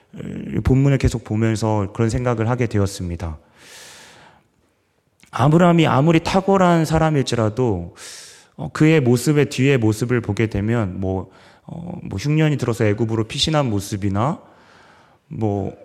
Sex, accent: male, native